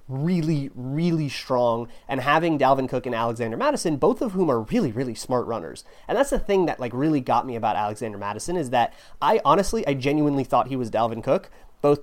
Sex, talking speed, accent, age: male, 210 wpm, American, 30-49